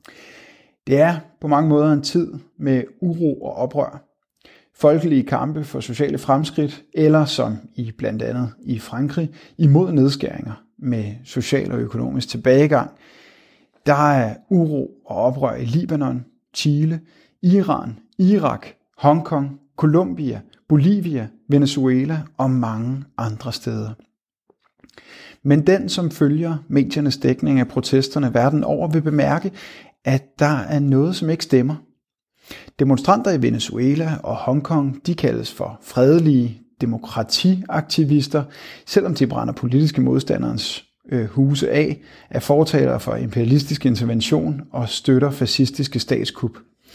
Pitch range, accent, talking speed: 130-155 Hz, native, 120 wpm